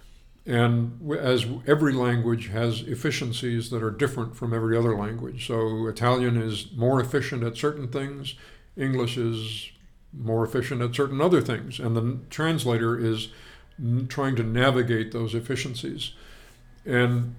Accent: American